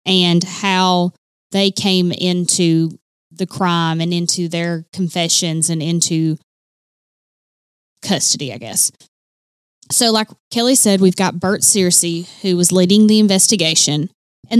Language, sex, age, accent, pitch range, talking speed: English, female, 20-39, American, 175-215 Hz, 125 wpm